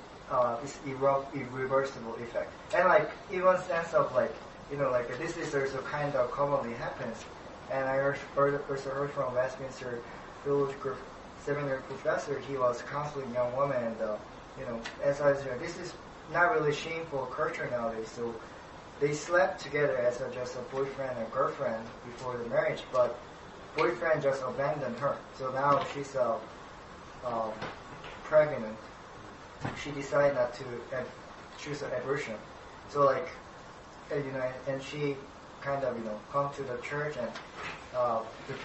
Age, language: 20-39, English